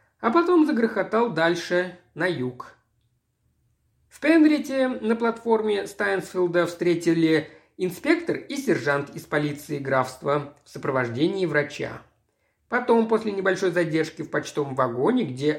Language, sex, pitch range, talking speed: Russian, male, 145-215 Hz, 110 wpm